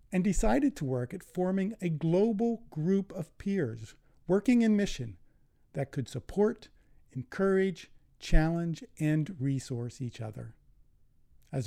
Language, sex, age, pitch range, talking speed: English, male, 40-59, 125-175 Hz, 125 wpm